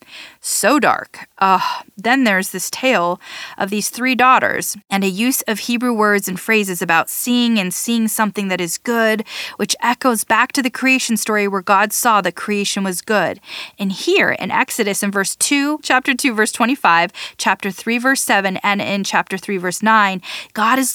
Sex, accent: female, American